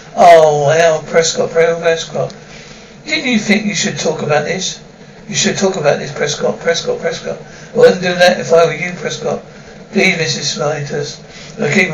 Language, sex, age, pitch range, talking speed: English, male, 60-79, 160-195 Hz, 170 wpm